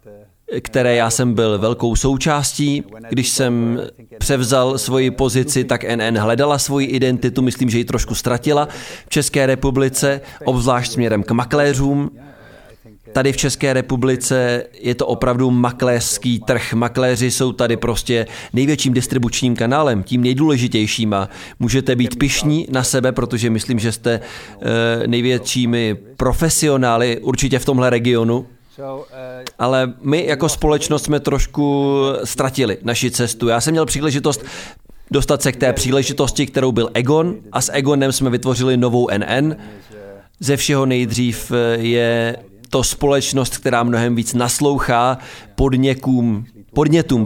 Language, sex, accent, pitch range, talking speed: Czech, male, native, 120-135 Hz, 130 wpm